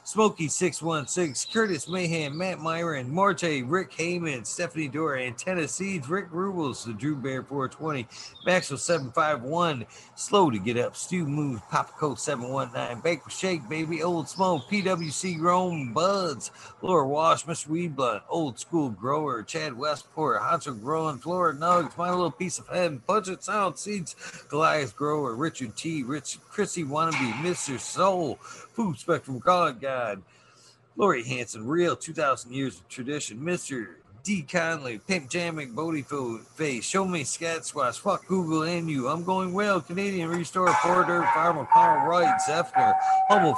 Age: 50-69